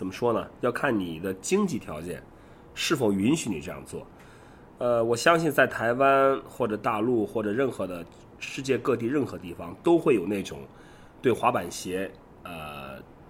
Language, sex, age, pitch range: Chinese, male, 30-49, 90-120 Hz